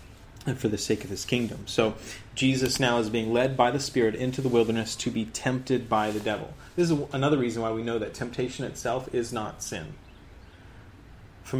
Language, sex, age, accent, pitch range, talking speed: English, male, 30-49, American, 100-125 Hz, 205 wpm